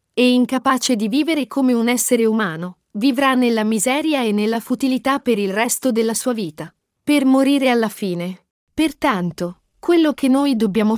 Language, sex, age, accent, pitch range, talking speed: Italian, female, 40-59, native, 205-260 Hz, 160 wpm